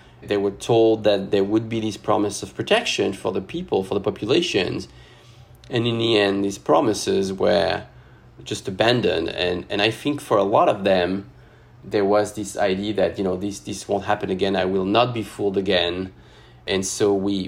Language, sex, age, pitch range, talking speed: English, male, 30-49, 95-120 Hz, 190 wpm